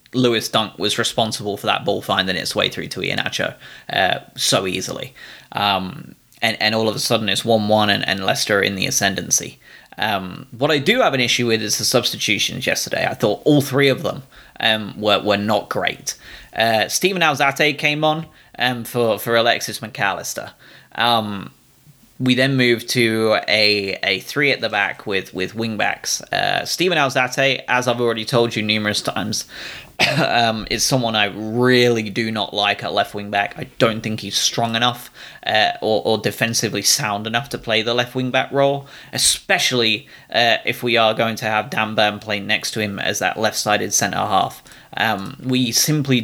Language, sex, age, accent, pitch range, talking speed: English, male, 20-39, British, 105-130 Hz, 185 wpm